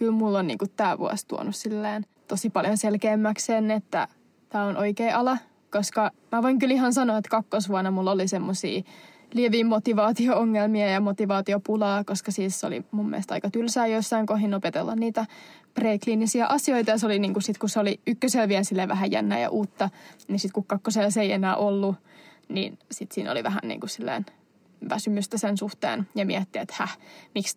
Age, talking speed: 20-39, 170 wpm